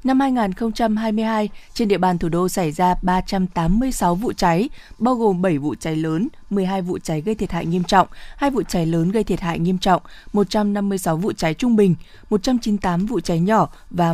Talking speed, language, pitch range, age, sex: 190 wpm, Vietnamese, 170-215 Hz, 20-39, female